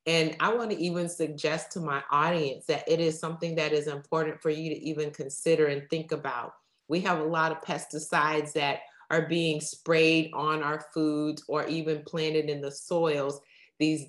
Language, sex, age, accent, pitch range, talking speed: English, female, 30-49, American, 155-180 Hz, 185 wpm